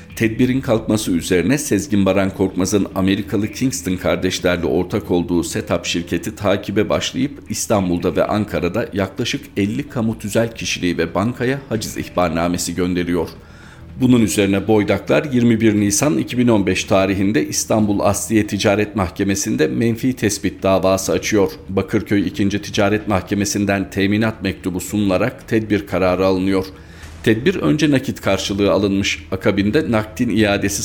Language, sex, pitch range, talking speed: Turkish, male, 95-110 Hz, 120 wpm